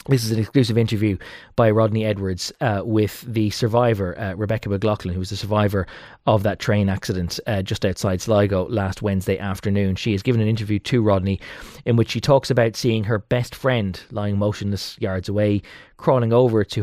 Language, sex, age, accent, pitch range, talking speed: English, male, 20-39, Irish, 100-120 Hz, 190 wpm